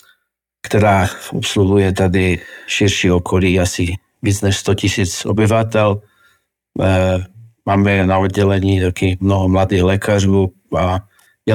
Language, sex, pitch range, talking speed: Slovak, male, 95-110 Hz, 105 wpm